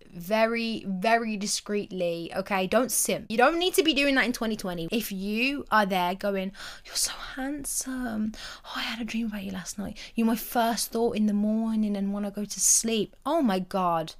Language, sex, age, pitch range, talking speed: English, female, 20-39, 195-250 Hz, 200 wpm